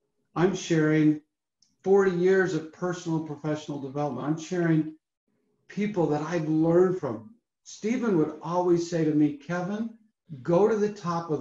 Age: 60-79